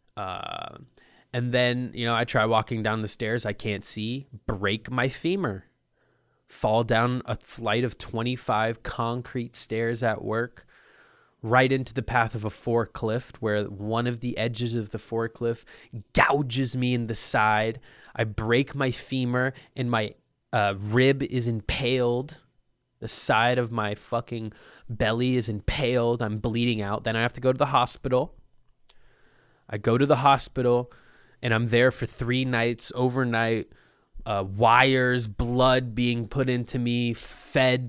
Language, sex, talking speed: English, male, 150 wpm